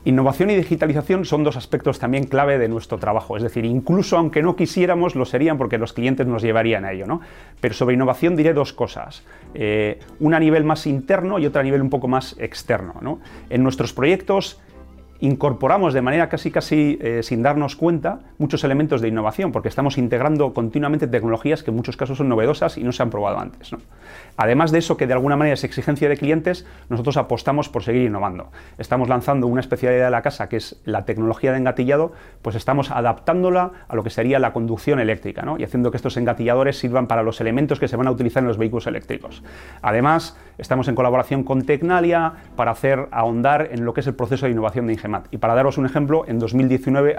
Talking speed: 210 wpm